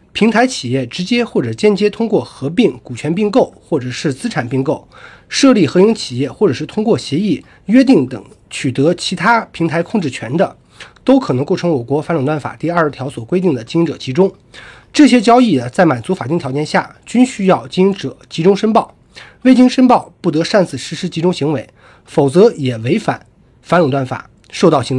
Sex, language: male, Chinese